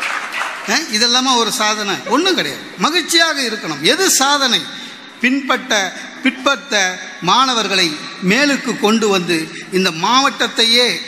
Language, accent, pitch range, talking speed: Tamil, native, 205-270 Hz, 95 wpm